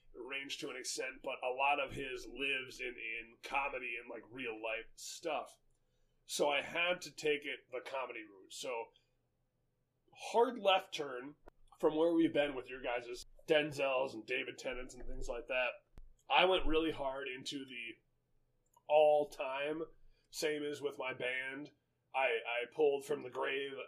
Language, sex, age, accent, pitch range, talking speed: English, male, 30-49, American, 135-200 Hz, 160 wpm